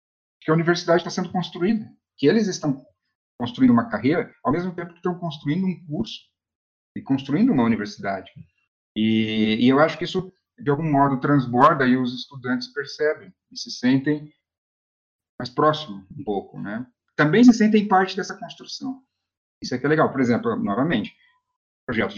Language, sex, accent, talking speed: Portuguese, male, Brazilian, 165 wpm